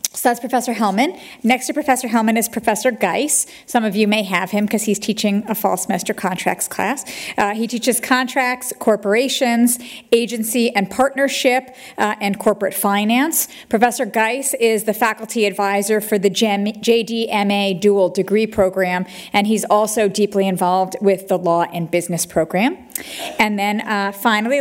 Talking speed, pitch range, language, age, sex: 155 wpm, 195-230 Hz, English, 40-59, female